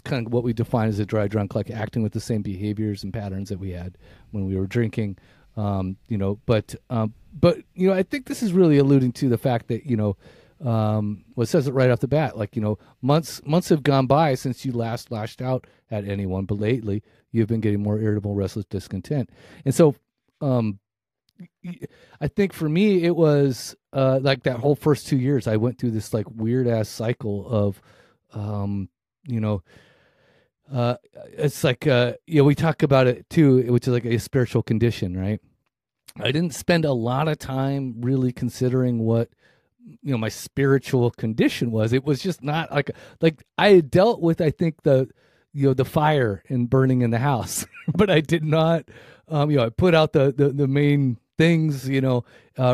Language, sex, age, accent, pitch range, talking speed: English, male, 30-49, American, 110-145 Hz, 205 wpm